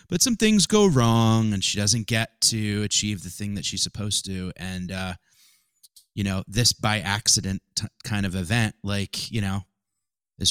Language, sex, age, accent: English, male, 30-49, American